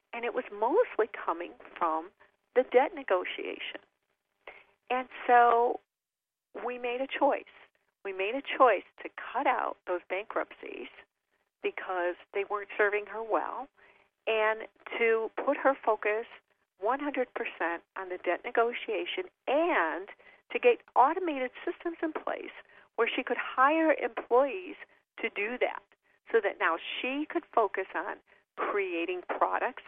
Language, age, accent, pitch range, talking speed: English, 50-69, American, 205-310 Hz, 130 wpm